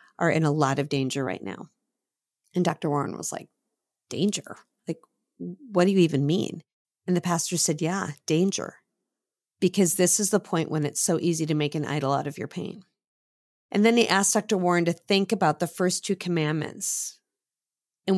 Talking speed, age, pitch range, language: 190 wpm, 40-59, 165-205 Hz, English